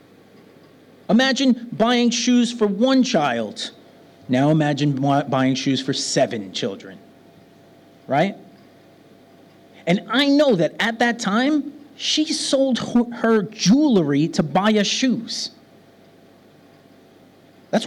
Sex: male